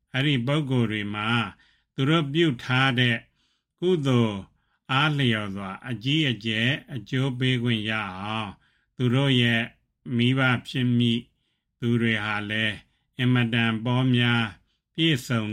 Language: English